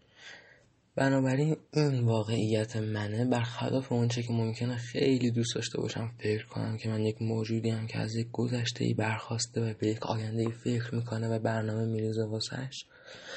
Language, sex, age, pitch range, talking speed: Persian, male, 20-39, 110-120 Hz, 155 wpm